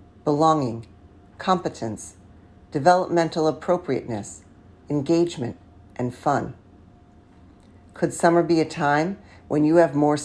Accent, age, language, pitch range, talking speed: American, 50-69, English, 105-170 Hz, 95 wpm